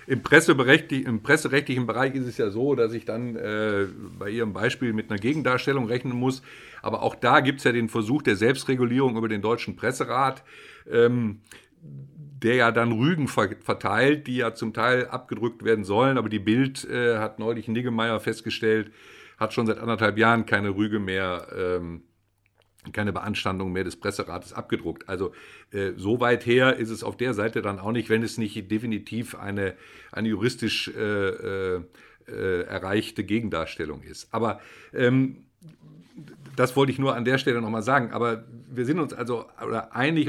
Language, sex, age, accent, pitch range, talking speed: German, male, 50-69, German, 110-130 Hz, 165 wpm